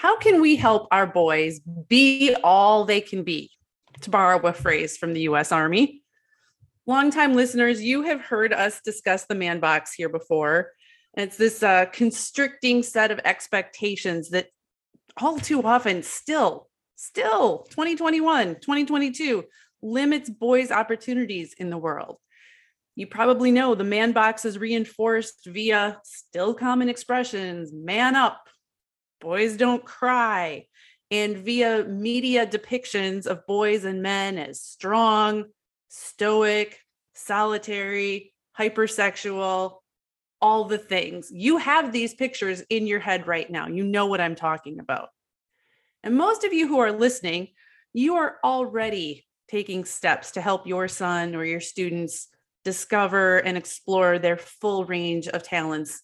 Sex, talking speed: female, 135 wpm